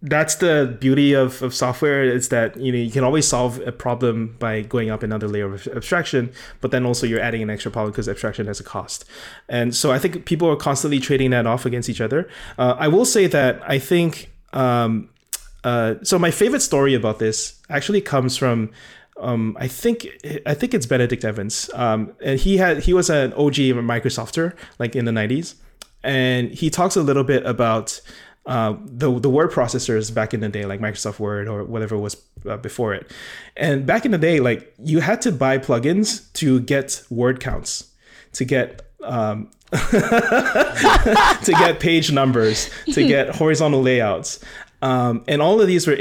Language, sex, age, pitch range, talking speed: English, male, 20-39, 115-150 Hz, 190 wpm